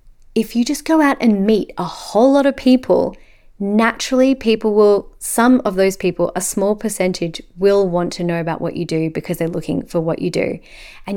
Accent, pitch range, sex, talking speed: Australian, 175-225 Hz, female, 205 wpm